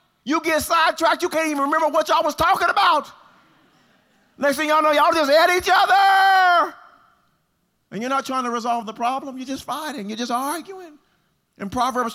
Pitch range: 150-240 Hz